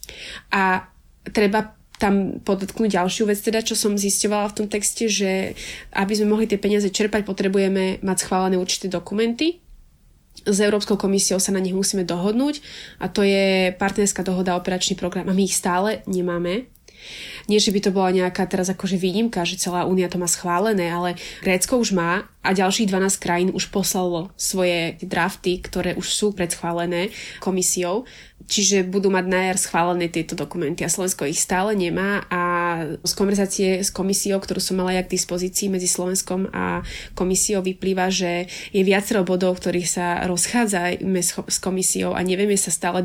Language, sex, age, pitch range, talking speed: Slovak, female, 20-39, 180-205 Hz, 165 wpm